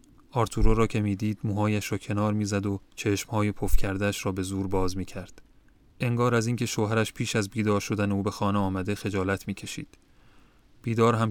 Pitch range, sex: 100-110 Hz, male